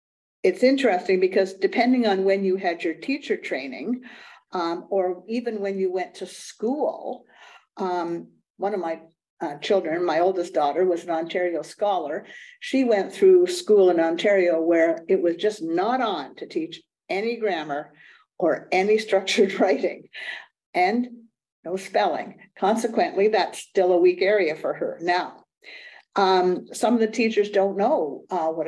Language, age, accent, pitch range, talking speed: English, 50-69, American, 175-220 Hz, 155 wpm